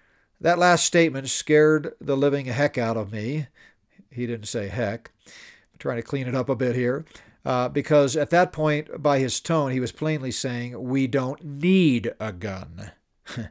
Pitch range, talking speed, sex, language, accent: 120-150 Hz, 180 wpm, male, English, American